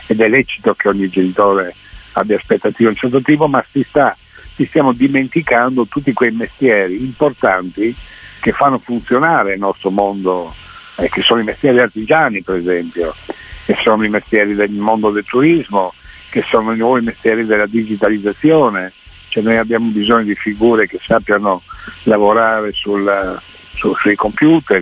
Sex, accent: male, native